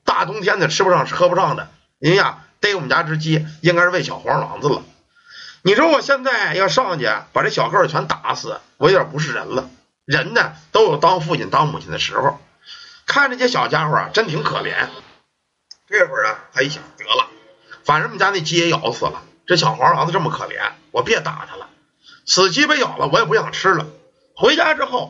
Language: Chinese